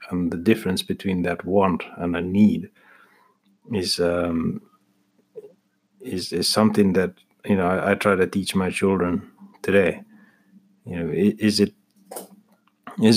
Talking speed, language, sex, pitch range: 135 wpm, English, male, 90-105 Hz